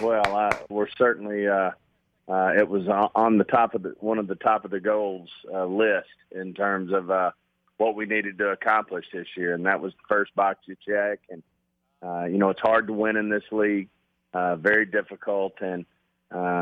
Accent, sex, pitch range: American, male, 95-105 Hz